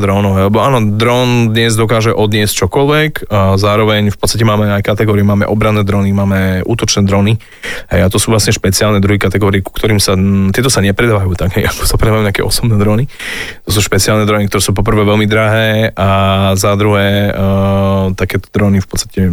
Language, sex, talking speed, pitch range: Slovak, male, 180 wpm, 100-110 Hz